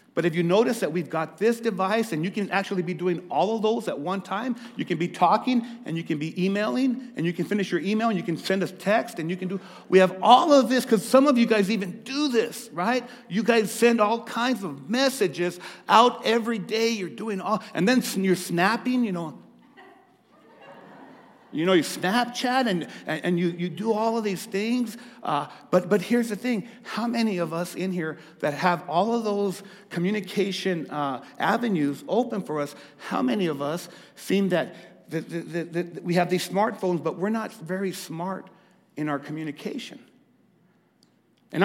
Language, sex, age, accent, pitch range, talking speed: English, male, 50-69, American, 175-225 Hz, 200 wpm